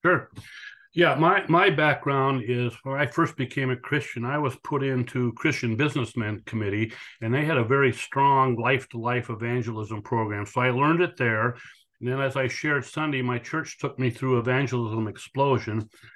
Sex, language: male, English